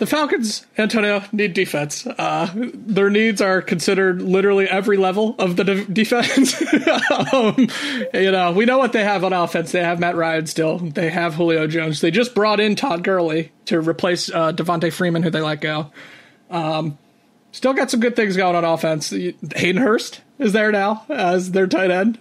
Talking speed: 185 wpm